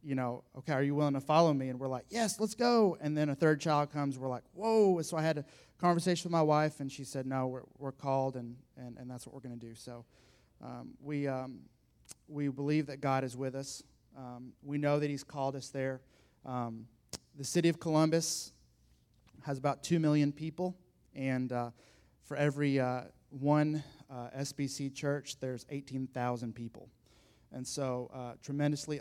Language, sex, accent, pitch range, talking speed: English, male, American, 125-145 Hz, 195 wpm